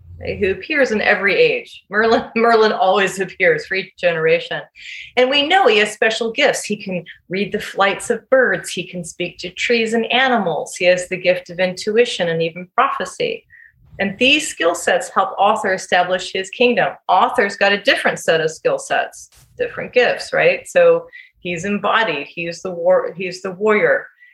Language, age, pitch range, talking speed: English, 30-49, 180-255 Hz, 175 wpm